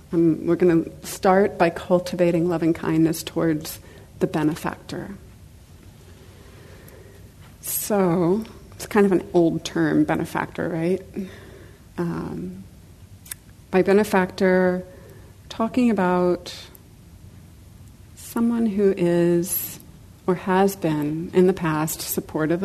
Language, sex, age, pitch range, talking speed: English, female, 40-59, 150-185 Hz, 90 wpm